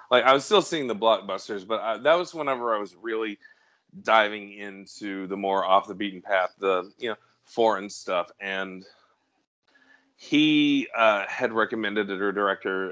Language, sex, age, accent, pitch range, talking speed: English, male, 30-49, American, 95-125 Hz, 165 wpm